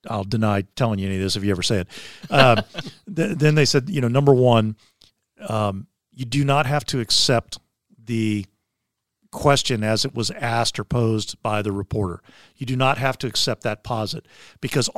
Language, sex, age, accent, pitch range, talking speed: English, male, 50-69, American, 115-150 Hz, 190 wpm